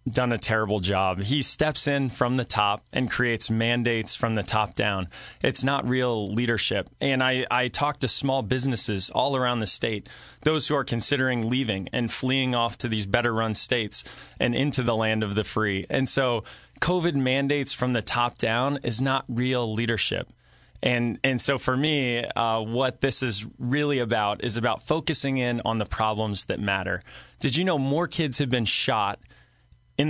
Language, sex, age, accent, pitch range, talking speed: English, male, 20-39, American, 110-135 Hz, 185 wpm